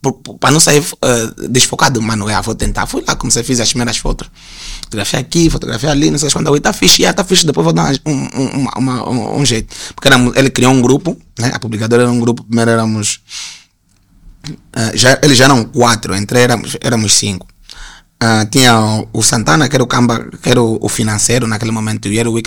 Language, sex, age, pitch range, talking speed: Portuguese, male, 20-39, 110-140 Hz, 215 wpm